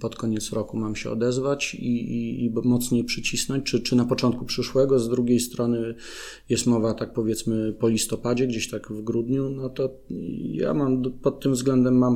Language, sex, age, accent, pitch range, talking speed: Polish, male, 40-59, native, 115-125 Hz, 185 wpm